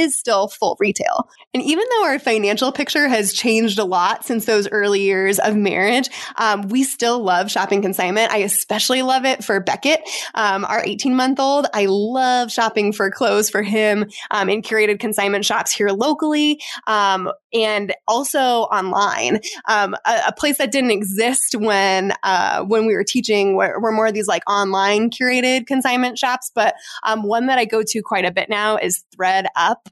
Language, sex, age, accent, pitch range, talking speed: English, female, 20-39, American, 200-250 Hz, 175 wpm